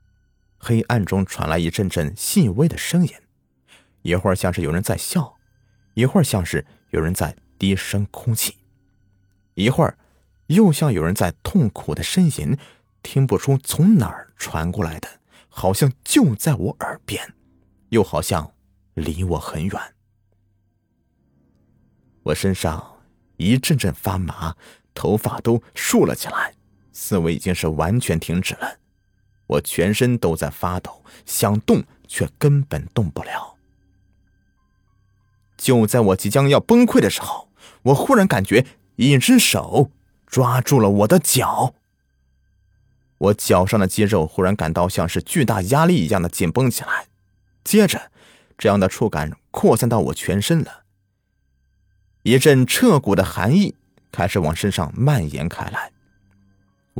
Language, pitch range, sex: Chinese, 85-120 Hz, male